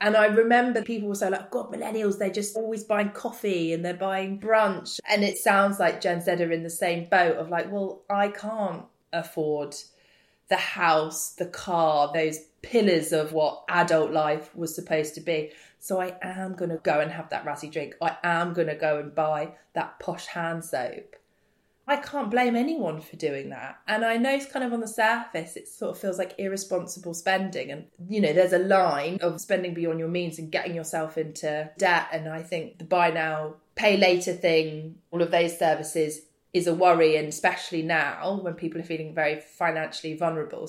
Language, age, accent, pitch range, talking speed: English, 20-39, British, 160-205 Hz, 200 wpm